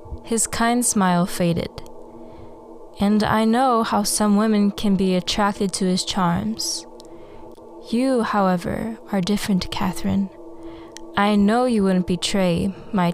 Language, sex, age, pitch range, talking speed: English, female, 10-29, 180-225 Hz, 125 wpm